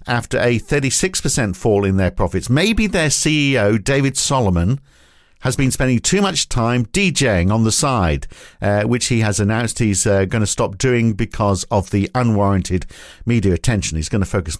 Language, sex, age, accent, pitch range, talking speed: English, male, 50-69, British, 100-140 Hz, 175 wpm